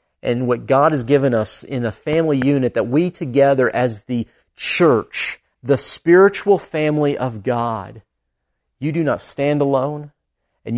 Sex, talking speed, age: male, 150 wpm, 40-59